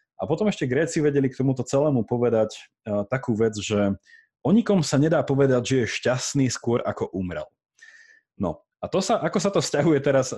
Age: 30-49